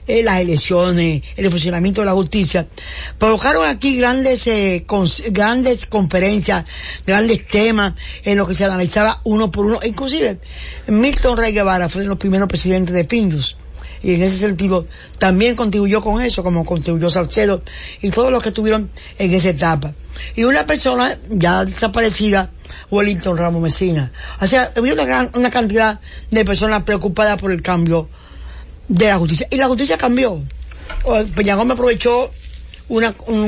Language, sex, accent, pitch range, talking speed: English, female, American, 175-220 Hz, 160 wpm